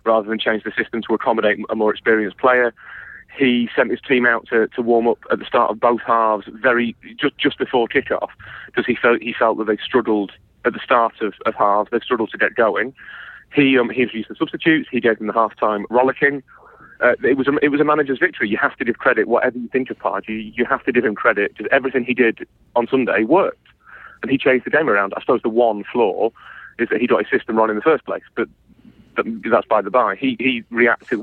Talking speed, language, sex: 240 wpm, English, male